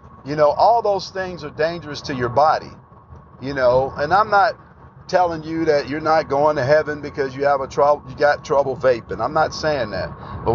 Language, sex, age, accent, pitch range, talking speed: English, male, 50-69, American, 125-160 Hz, 210 wpm